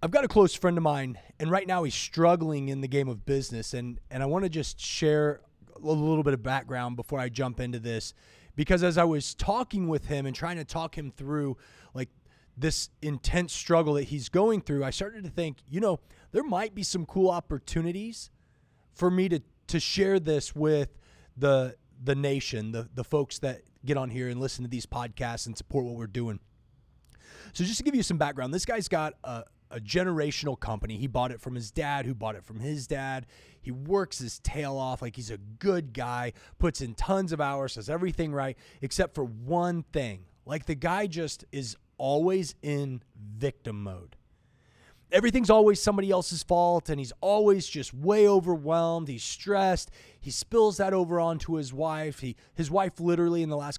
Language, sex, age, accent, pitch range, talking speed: English, male, 30-49, American, 125-175 Hz, 200 wpm